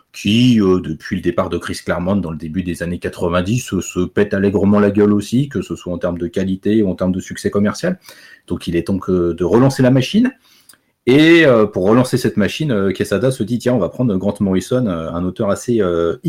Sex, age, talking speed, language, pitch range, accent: male, 30-49, 230 wpm, French, 90-115 Hz, French